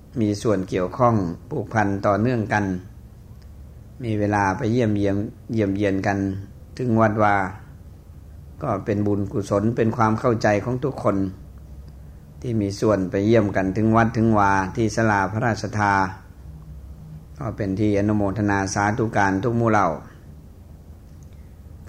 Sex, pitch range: male, 95-110 Hz